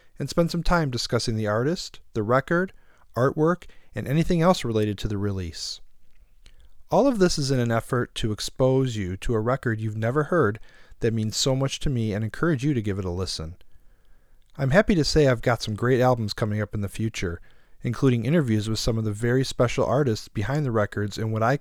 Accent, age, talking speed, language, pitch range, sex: American, 40-59, 210 wpm, English, 100-135 Hz, male